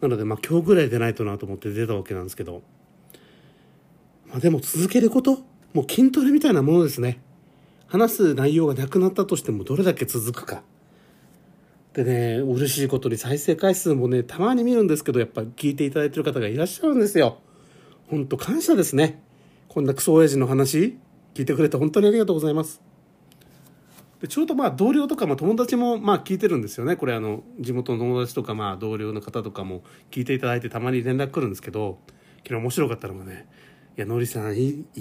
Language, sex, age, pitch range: Japanese, male, 40-59, 120-175 Hz